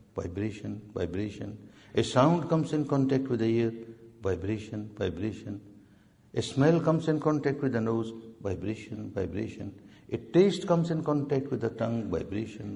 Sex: male